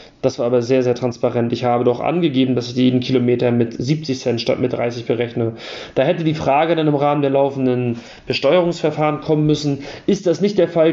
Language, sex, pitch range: German, male, 135-165 Hz